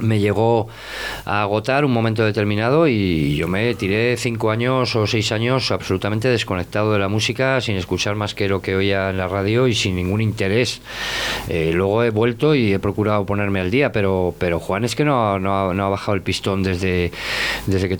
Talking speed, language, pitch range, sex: 200 wpm, Spanish, 100-120 Hz, male